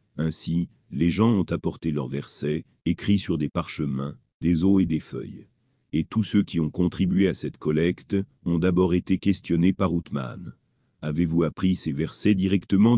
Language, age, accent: French, 50-69, French